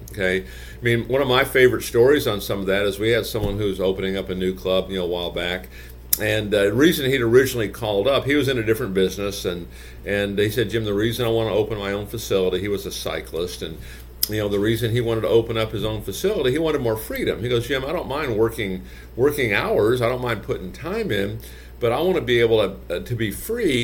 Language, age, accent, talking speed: English, 50-69, American, 255 wpm